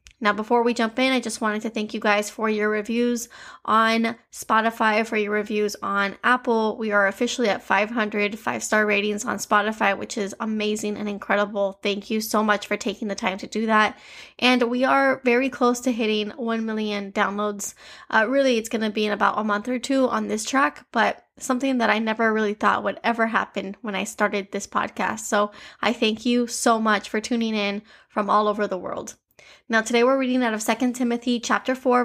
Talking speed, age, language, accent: 210 wpm, 10-29, English, American